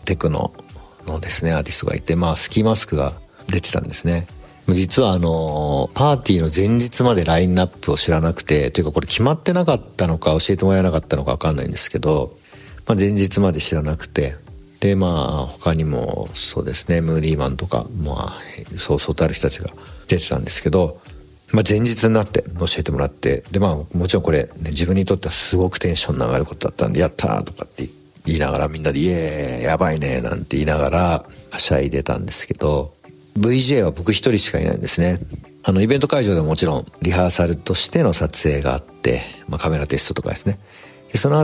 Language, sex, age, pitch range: Japanese, male, 50-69, 75-100 Hz